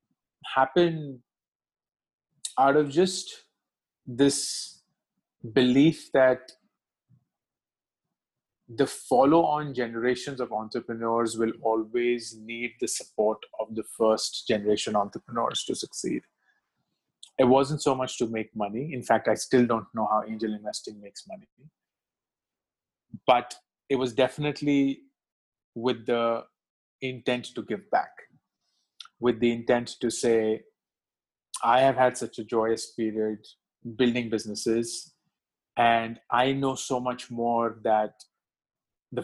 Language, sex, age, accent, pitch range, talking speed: English, male, 30-49, Indian, 110-130 Hz, 110 wpm